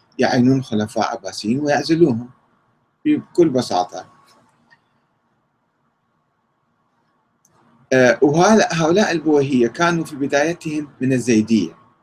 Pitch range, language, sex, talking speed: 120-160 Hz, Arabic, male, 65 wpm